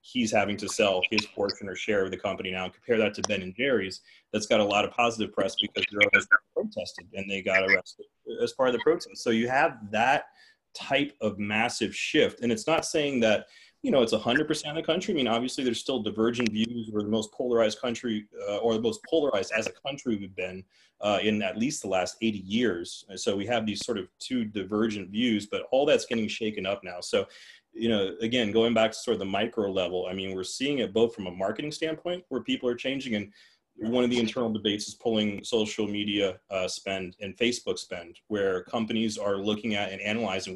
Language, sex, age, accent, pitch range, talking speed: English, male, 30-49, American, 100-125 Hz, 225 wpm